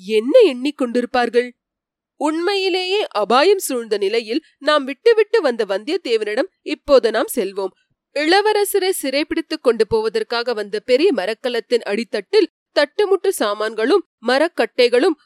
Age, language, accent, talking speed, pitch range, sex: 30-49, Tamil, native, 90 wpm, 240-375 Hz, female